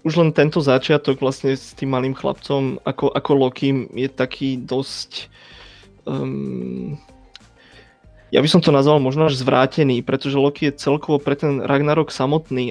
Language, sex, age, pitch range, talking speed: Slovak, male, 20-39, 130-150 Hz, 150 wpm